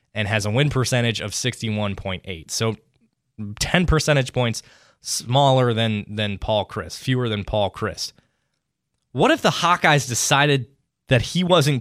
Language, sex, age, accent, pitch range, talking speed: English, male, 20-39, American, 110-155 Hz, 140 wpm